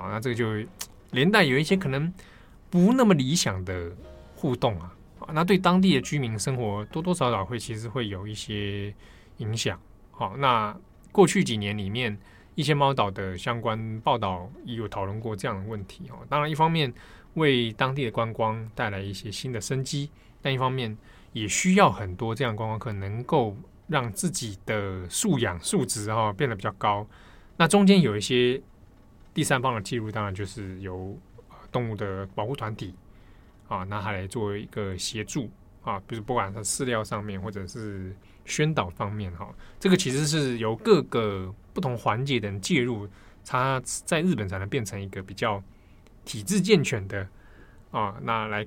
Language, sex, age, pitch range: Chinese, male, 20-39, 100-135 Hz